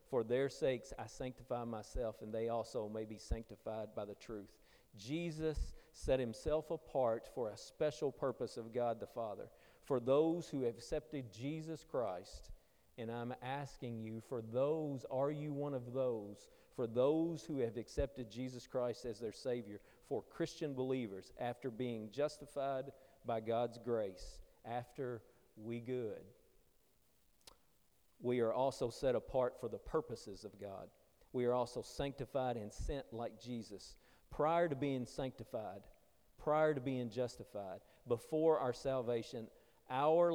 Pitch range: 115-140 Hz